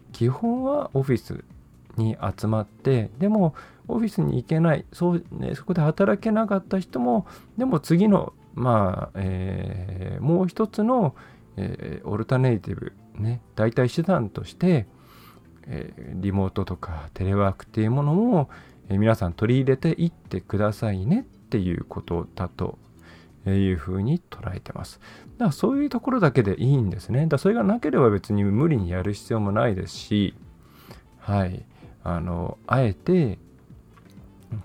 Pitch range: 95-155 Hz